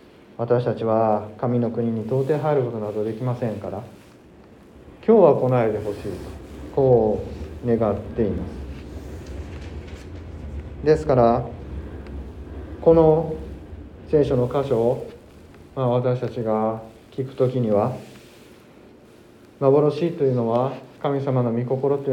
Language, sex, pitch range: Japanese, male, 110-135 Hz